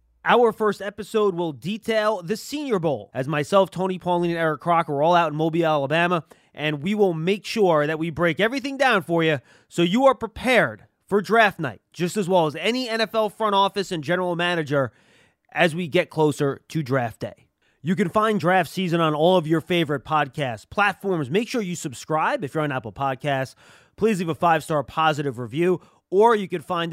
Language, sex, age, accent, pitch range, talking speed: English, male, 30-49, American, 150-210 Hz, 200 wpm